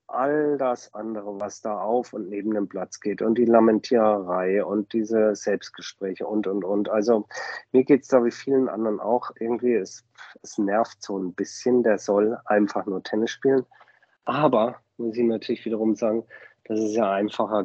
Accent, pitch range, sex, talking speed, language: German, 95-115 Hz, male, 180 wpm, German